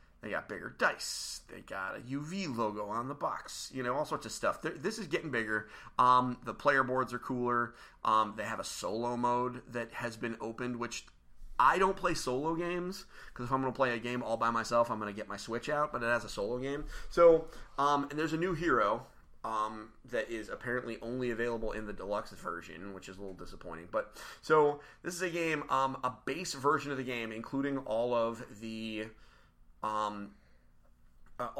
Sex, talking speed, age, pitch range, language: male, 205 wpm, 30-49, 110-140 Hz, English